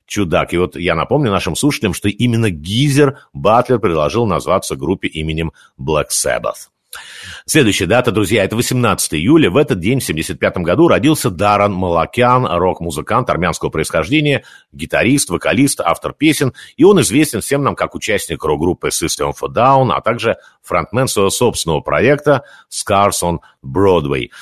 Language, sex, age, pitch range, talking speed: Russian, male, 50-69, 85-140 Hz, 145 wpm